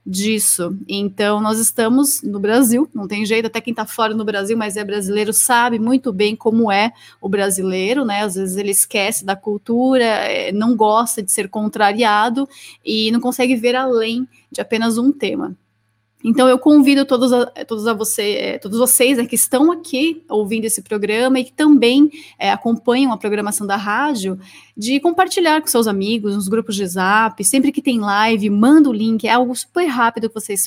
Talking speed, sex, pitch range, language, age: 175 wpm, female, 210-255 Hz, Portuguese, 20-39